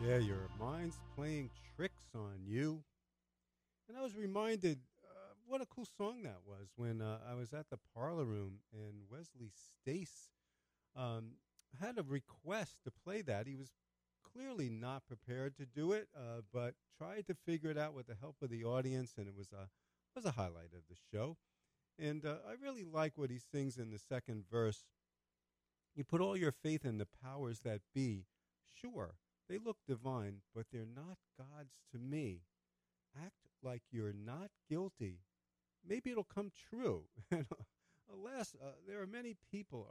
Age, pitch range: 50-69, 100-170 Hz